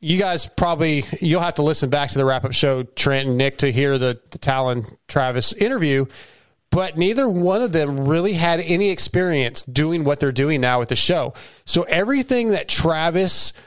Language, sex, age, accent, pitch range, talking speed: English, male, 30-49, American, 140-170 Hz, 185 wpm